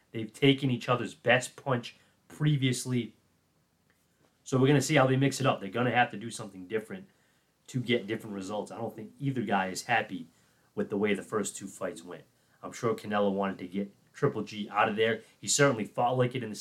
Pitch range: 105-130 Hz